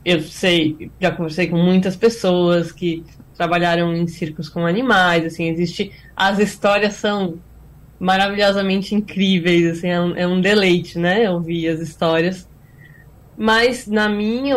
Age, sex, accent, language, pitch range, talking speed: 10-29, female, Brazilian, Portuguese, 175-210 Hz, 135 wpm